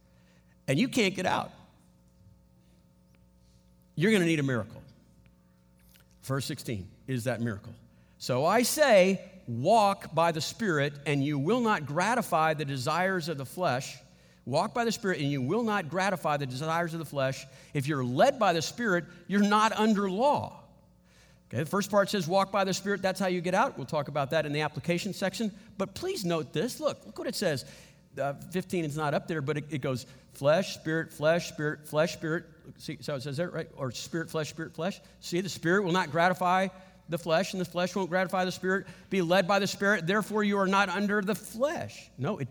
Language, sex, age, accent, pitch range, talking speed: English, male, 50-69, American, 135-195 Hz, 205 wpm